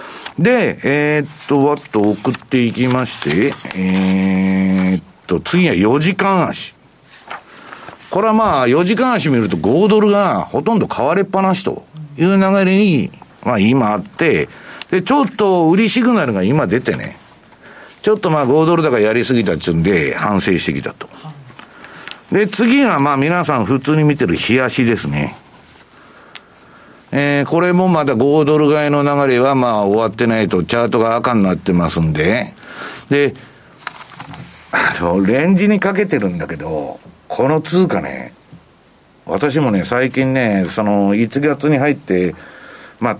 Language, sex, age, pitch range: Japanese, male, 50-69, 110-175 Hz